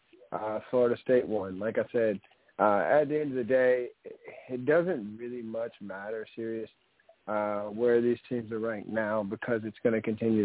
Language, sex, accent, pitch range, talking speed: English, male, American, 110-135 Hz, 185 wpm